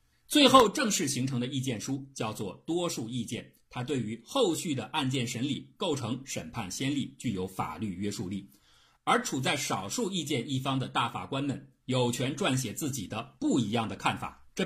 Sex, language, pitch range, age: male, Chinese, 100-135 Hz, 50-69